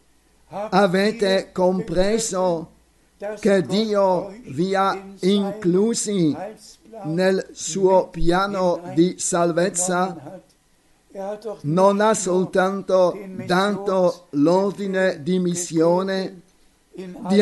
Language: Italian